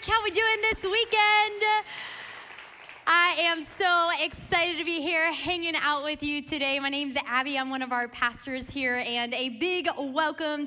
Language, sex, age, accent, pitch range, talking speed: English, female, 10-29, American, 270-355 Hz, 180 wpm